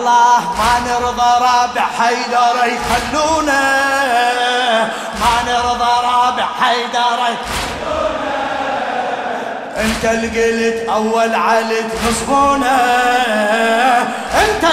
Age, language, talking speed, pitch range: 20-39, Arabic, 65 wpm, 230-275 Hz